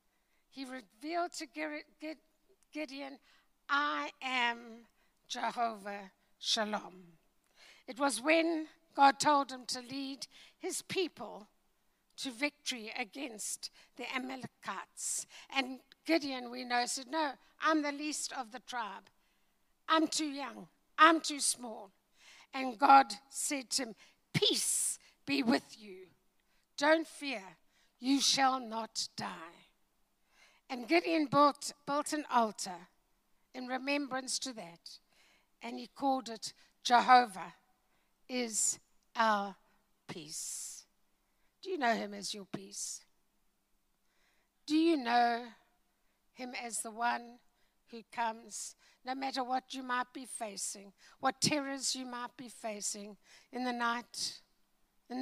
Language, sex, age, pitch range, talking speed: English, female, 60-79, 225-285 Hz, 115 wpm